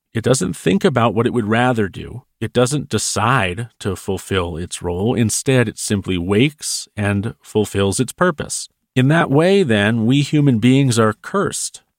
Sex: male